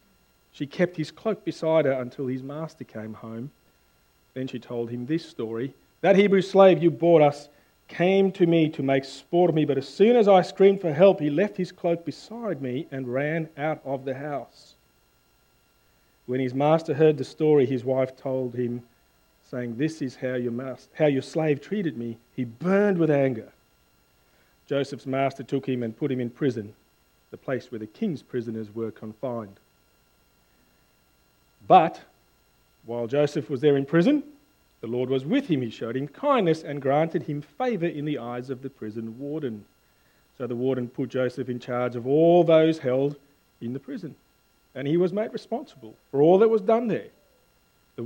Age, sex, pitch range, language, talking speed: 50-69, male, 125-160 Hz, English, 180 wpm